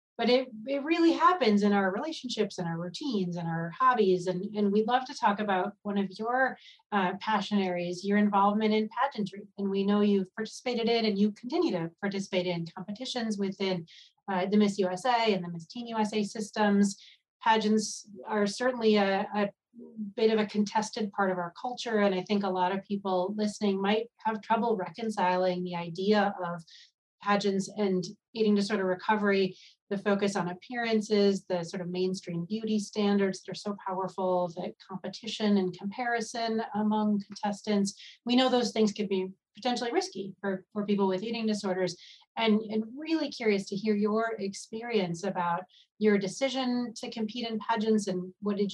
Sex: female